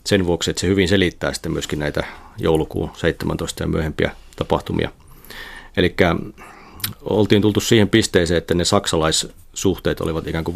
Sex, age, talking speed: male, 30-49, 140 wpm